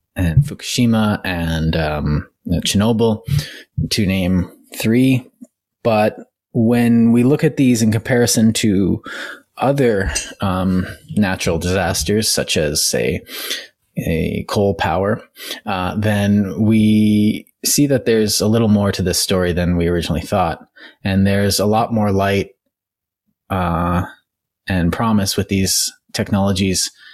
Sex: male